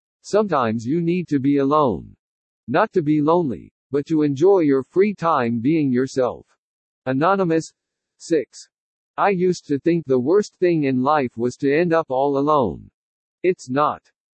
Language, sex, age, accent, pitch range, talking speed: English, male, 50-69, American, 130-175 Hz, 155 wpm